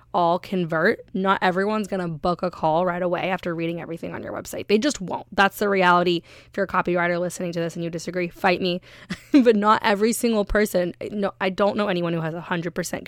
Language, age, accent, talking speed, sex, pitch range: English, 20-39, American, 225 wpm, female, 170-200 Hz